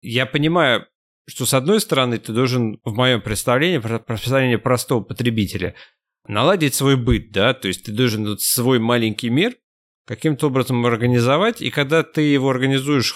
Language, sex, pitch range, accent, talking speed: Russian, male, 110-150 Hz, native, 150 wpm